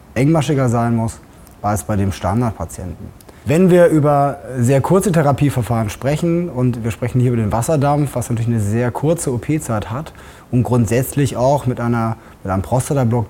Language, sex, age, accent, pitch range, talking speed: German, male, 20-39, German, 110-135 Hz, 165 wpm